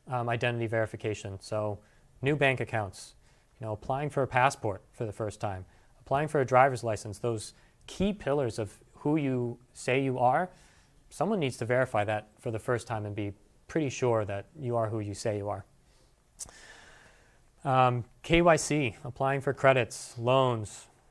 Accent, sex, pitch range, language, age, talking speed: American, male, 110-135 Hz, English, 30-49, 165 wpm